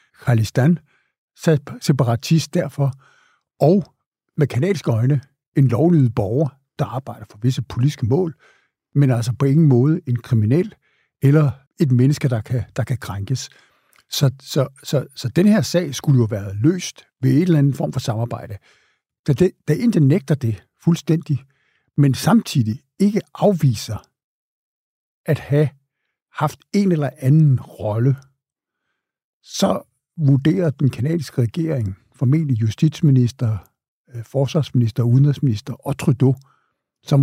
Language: Danish